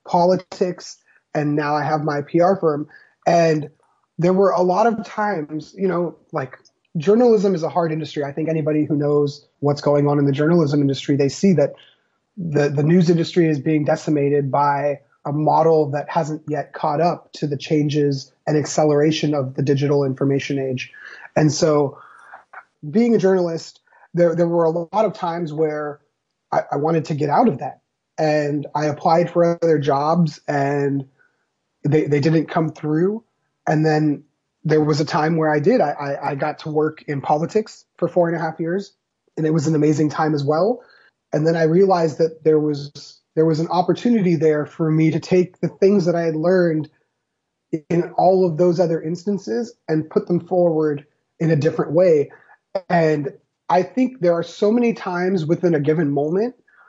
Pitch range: 150-175 Hz